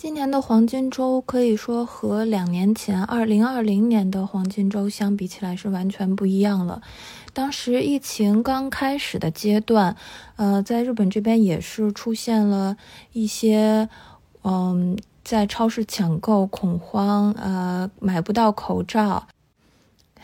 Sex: female